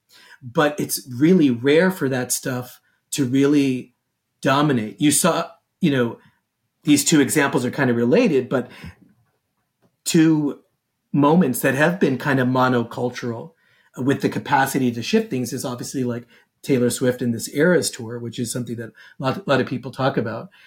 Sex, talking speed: male, 165 wpm